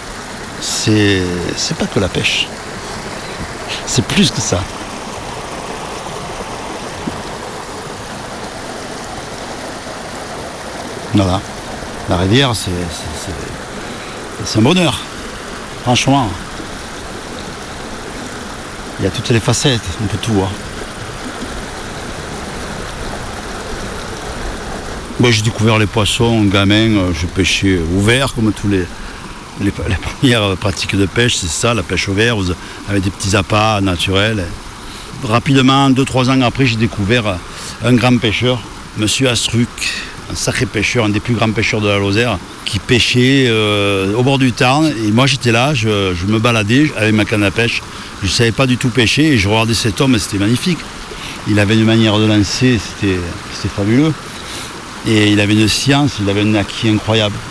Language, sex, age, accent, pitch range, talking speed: French, male, 60-79, French, 100-120 Hz, 145 wpm